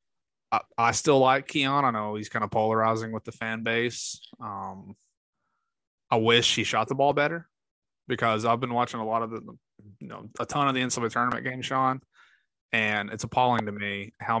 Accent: American